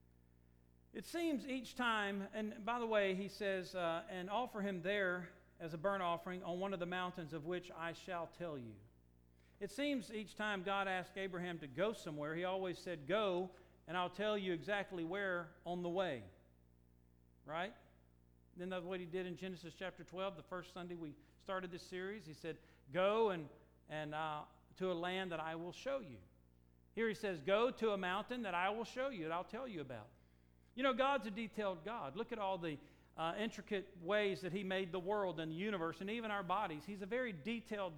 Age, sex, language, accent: 50-69, male, English, American